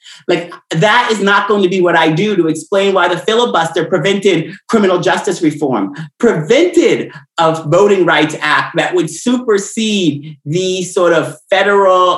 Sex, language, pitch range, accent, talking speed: male, English, 150-190 Hz, American, 155 wpm